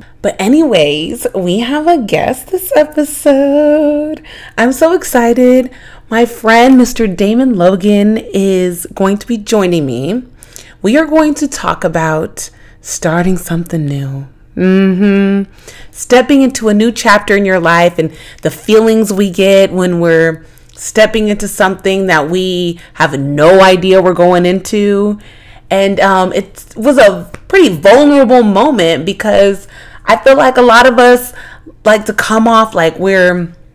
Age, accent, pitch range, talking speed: 30-49, American, 180-245 Hz, 140 wpm